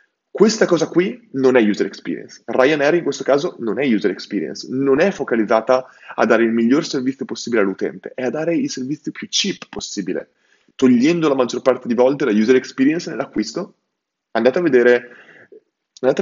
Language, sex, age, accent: Italian, male, 20-39, native